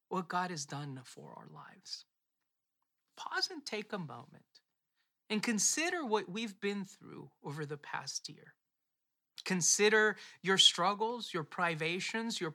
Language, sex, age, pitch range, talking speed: English, male, 30-49, 165-220 Hz, 135 wpm